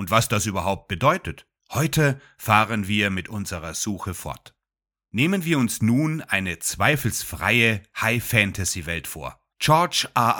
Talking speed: 125 wpm